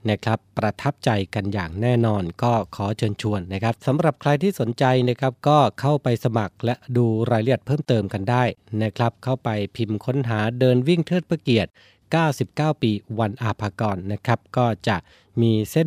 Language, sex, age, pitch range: Thai, male, 20-39, 105-130 Hz